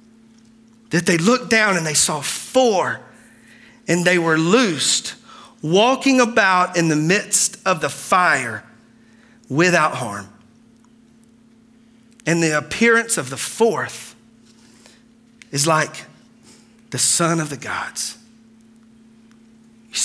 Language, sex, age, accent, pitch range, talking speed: English, male, 40-59, American, 155-225 Hz, 110 wpm